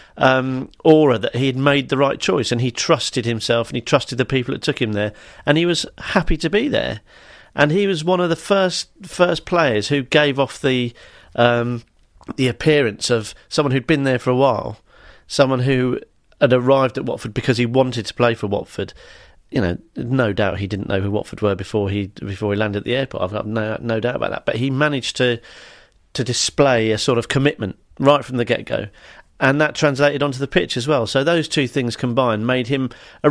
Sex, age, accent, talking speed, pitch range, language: male, 40-59, British, 220 wpm, 115-150 Hz, English